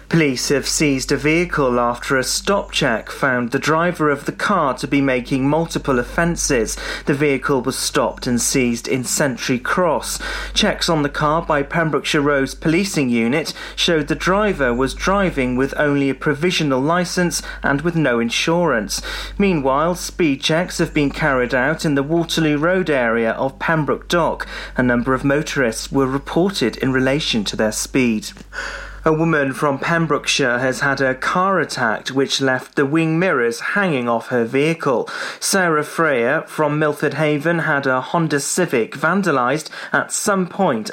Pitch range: 130-165 Hz